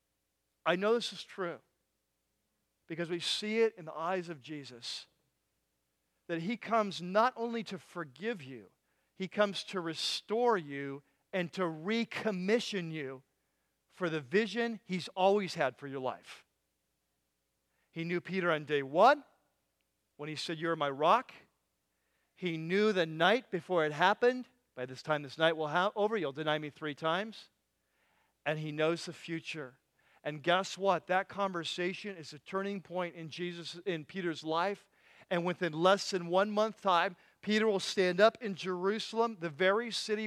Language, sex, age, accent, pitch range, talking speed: English, male, 40-59, American, 155-205 Hz, 160 wpm